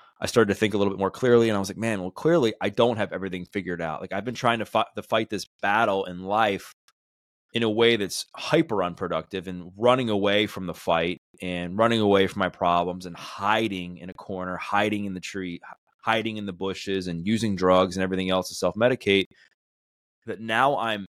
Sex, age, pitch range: male, 20-39, 90-110 Hz